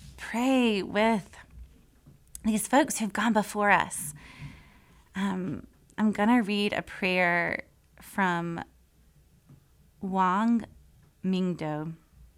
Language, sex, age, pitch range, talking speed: English, female, 30-49, 150-205 Hz, 85 wpm